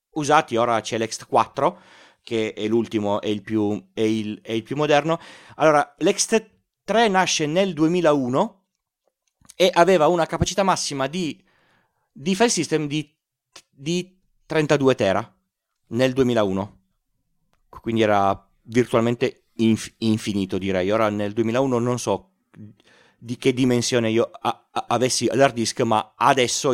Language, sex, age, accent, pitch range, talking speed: Italian, male, 40-59, native, 110-160 Hz, 125 wpm